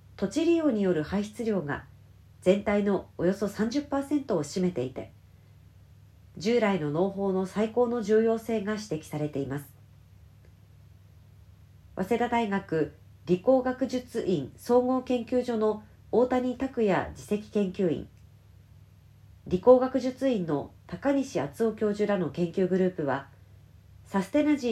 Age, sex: 40-59, female